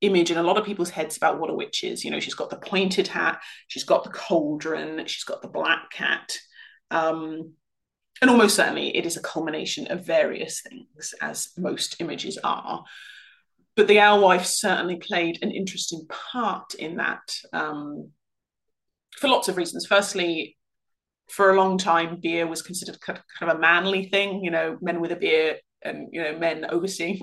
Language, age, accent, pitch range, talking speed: English, 30-49, British, 165-200 Hz, 185 wpm